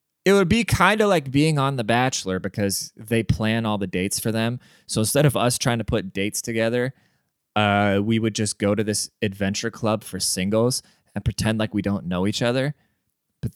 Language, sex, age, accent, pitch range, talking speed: English, male, 20-39, American, 95-135 Hz, 210 wpm